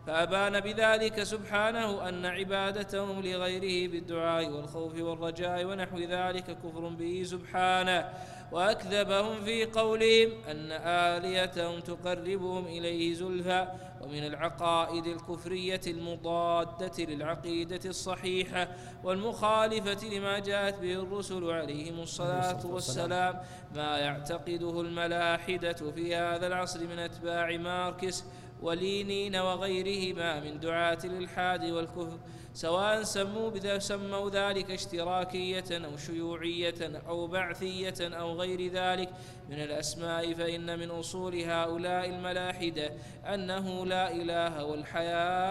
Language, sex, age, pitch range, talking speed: Arabic, male, 20-39, 170-185 Hz, 100 wpm